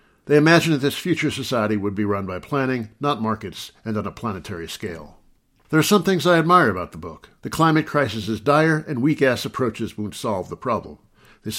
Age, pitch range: 60-79, 110-145 Hz